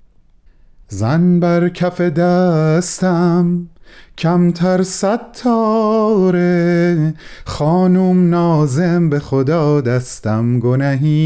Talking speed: 65 wpm